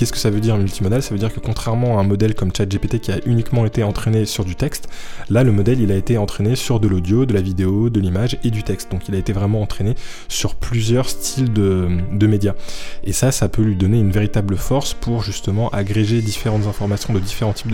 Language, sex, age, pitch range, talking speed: French, male, 20-39, 95-115 Hz, 245 wpm